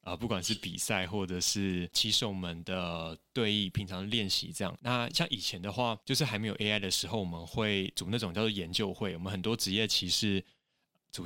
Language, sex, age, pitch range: Chinese, male, 20-39, 95-120 Hz